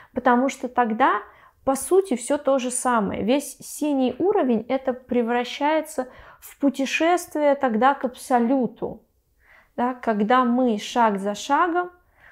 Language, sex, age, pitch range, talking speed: Russian, female, 20-39, 210-255 Hz, 120 wpm